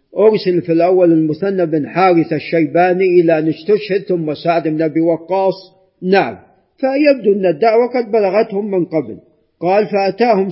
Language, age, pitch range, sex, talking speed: Arabic, 50-69, 180-240 Hz, male, 145 wpm